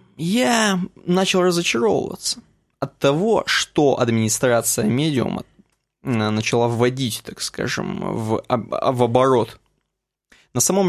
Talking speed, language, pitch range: 95 wpm, Russian, 120-160 Hz